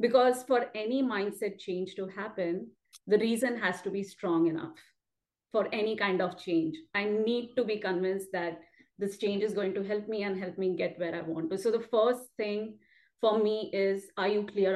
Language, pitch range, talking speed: English, 190-230 Hz, 205 wpm